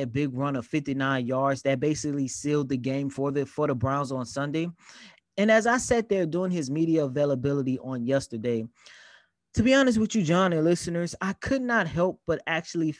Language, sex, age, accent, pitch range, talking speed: English, male, 20-39, American, 140-195 Hz, 200 wpm